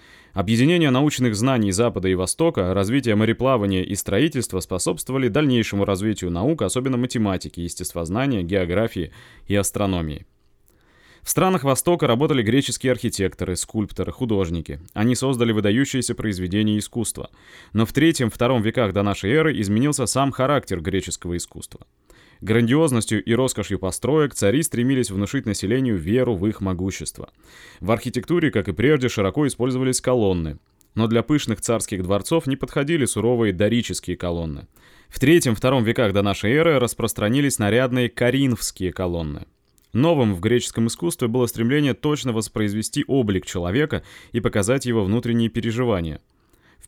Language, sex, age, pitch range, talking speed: Russian, male, 20-39, 95-125 Hz, 130 wpm